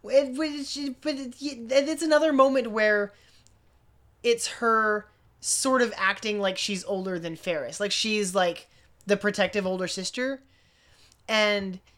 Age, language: 20-39, English